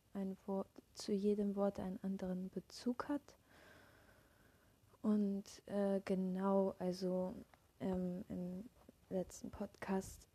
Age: 20-39